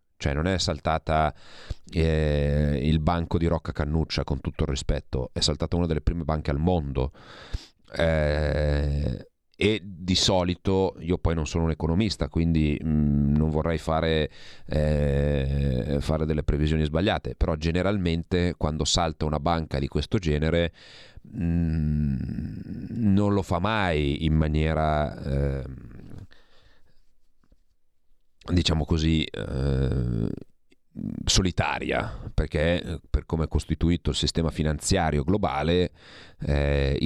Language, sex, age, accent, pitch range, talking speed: Italian, male, 30-49, native, 75-90 Hz, 115 wpm